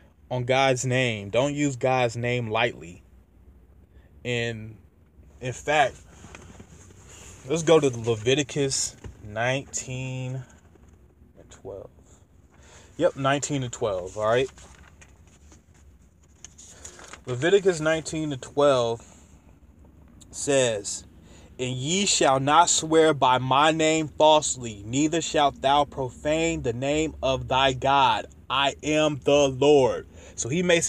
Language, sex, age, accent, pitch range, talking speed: English, male, 20-39, American, 90-140 Hz, 105 wpm